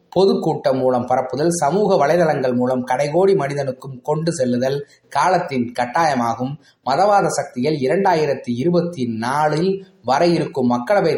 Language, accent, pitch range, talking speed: Tamil, native, 130-170 Hz, 100 wpm